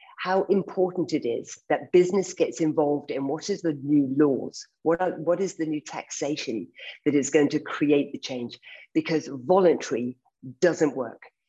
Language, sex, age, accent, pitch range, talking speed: English, female, 50-69, British, 140-175 Hz, 160 wpm